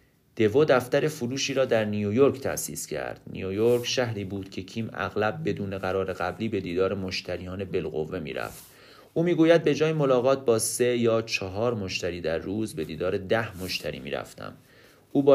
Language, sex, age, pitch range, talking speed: Persian, male, 30-49, 100-130 Hz, 155 wpm